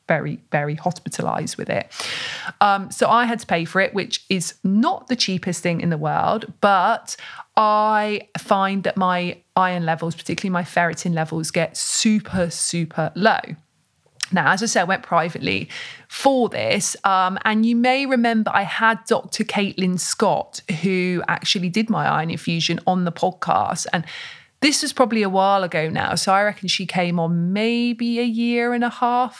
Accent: British